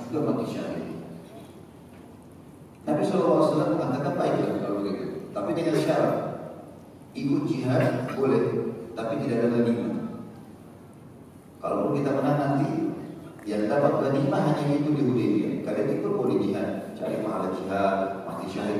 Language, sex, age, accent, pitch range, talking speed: Indonesian, male, 40-59, native, 105-130 Hz, 125 wpm